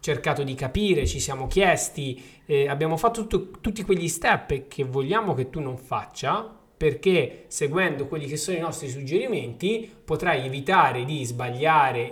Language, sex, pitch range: Italian, male, 140-190 Hz